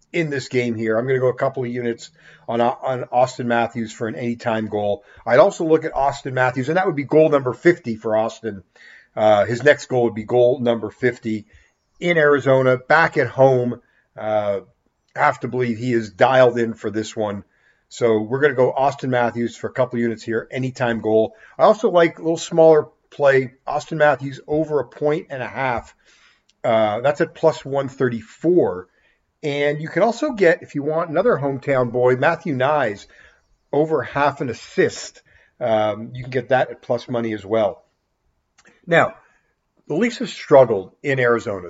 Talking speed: 185 wpm